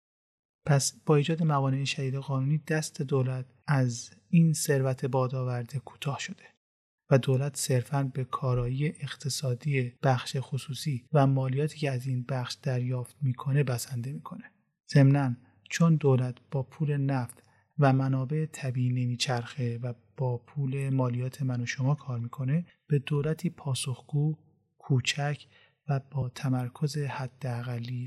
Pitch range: 130-150 Hz